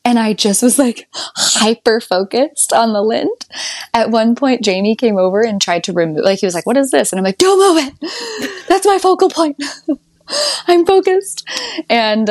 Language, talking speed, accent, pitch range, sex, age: English, 195 wpm, American, 170-240 Hz, female, 10-29